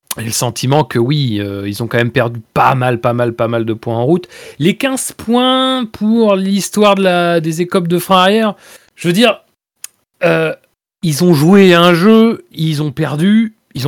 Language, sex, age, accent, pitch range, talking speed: French, male, 40-59, French, 125-185 Hz, 195 wpm